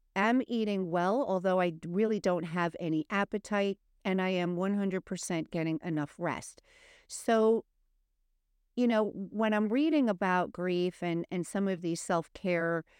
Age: 50-69